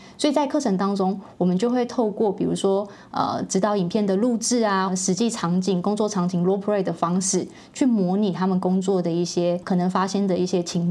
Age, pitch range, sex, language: 20-39, 180-210 Hz, female, Chinese